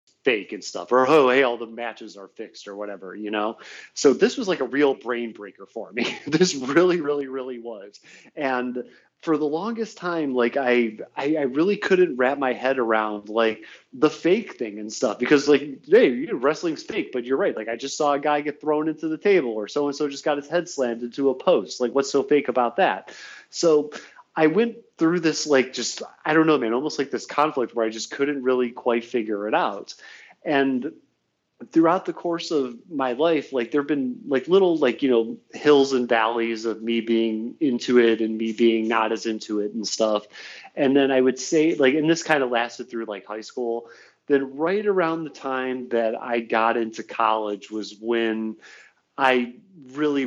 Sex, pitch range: male, 110-145 Hz